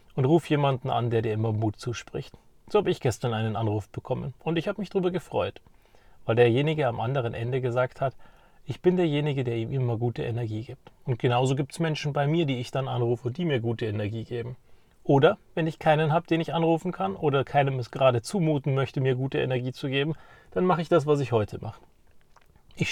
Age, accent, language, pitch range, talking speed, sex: 30-49, German, German, 120-155 Hz, 220 wpm, male